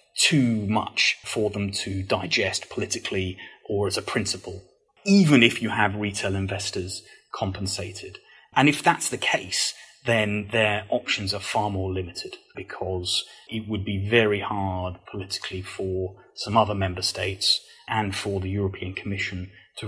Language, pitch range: English, 95-110 Hz